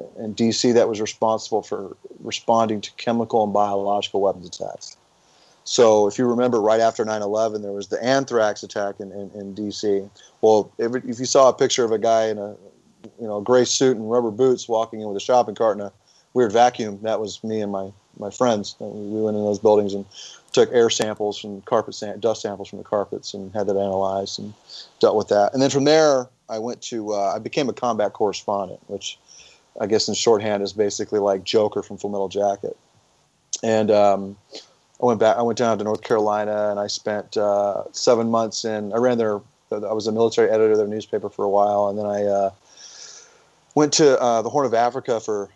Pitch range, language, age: 100-115 Hz, English, 30-49